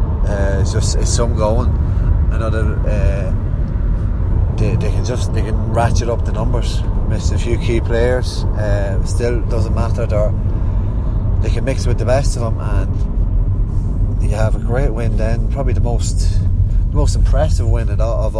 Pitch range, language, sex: 90-110 Hz, English, male